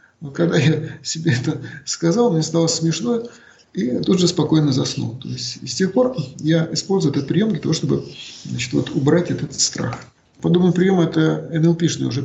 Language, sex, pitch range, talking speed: Russian, male, 150-185 Hz, 175 wpm